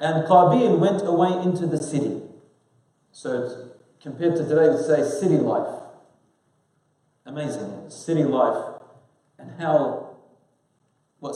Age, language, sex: 30-49, English, male